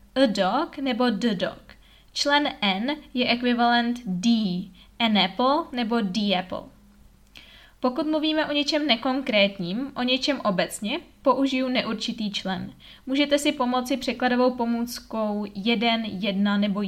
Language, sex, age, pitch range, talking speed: Czech, female, 20-39, 215-260 Hz, 120 wpm